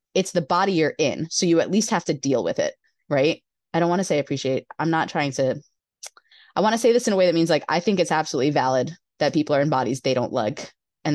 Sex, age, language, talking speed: female, 20-39, English, 270 wpm